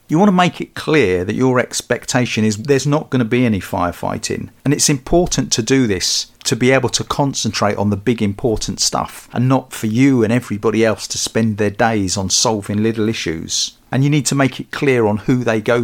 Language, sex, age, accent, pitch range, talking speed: English, male, 50-69, British, 105-140 Hz, 225 wpm